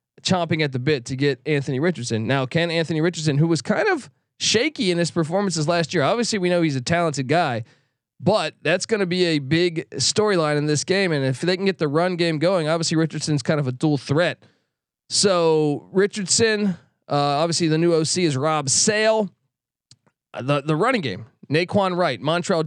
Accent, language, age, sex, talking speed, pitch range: American, English, 20-39, male, 195 wpm, 140-175 Hz